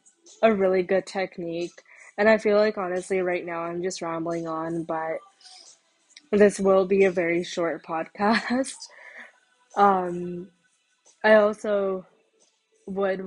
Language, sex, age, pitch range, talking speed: English, female, 20-39, 175-205 Hz, 120 wpm